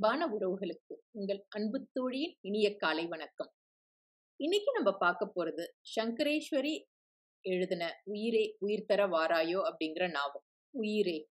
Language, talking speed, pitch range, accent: Tamil, 105 wpm, 165-225 Hz, native